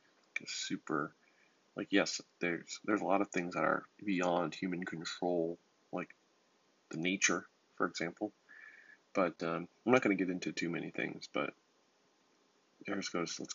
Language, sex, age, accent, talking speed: English, male, 20-39, American, 140 wpm